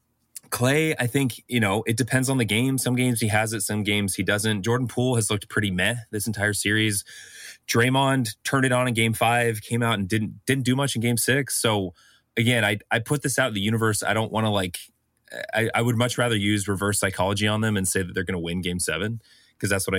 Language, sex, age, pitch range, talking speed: English, male, 20-39, 95-125 Hz, 245 wpm